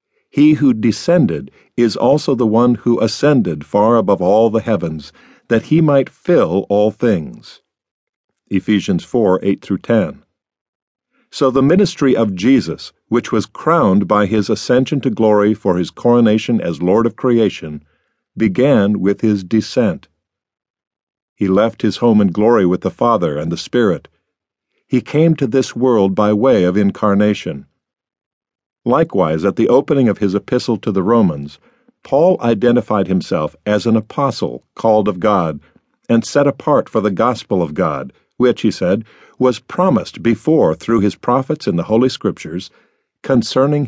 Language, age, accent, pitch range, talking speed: English, 50-69, American, 100-130 Hz, 150 wpm